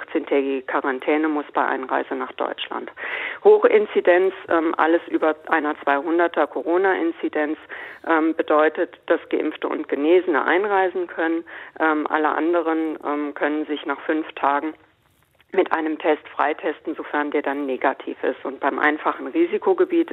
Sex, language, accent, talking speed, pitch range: female, German, German, 130 wpm, 155-185 Hz